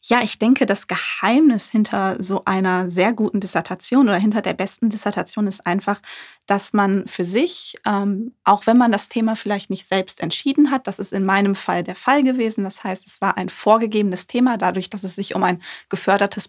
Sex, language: female, German